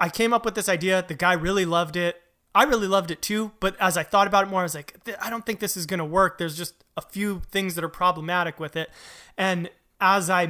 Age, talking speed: 20-39, 270 wpm